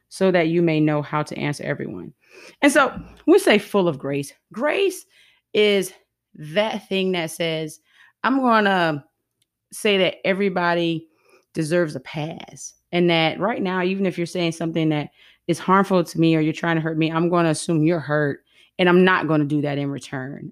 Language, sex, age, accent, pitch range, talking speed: English, female, 30-49, American, 155-195 Hz, 195 wpm